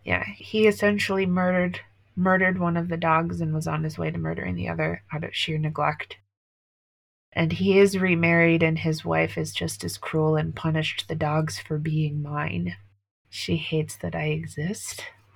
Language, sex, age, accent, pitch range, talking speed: English, female, 20-39, American, 145-170 Hz, 175 wpm